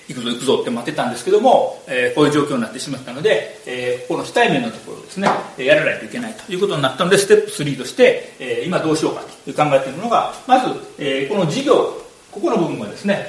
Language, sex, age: Japanese, male, 40-59